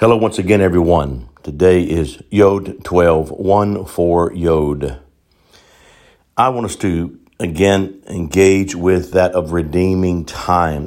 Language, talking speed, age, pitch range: English, 120 wpm, 50-69, 75-90 Hz